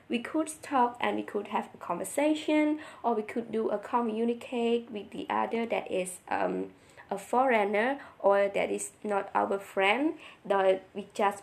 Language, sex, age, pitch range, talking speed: English, female, 20-39, 200-255 Hz, 170 wpm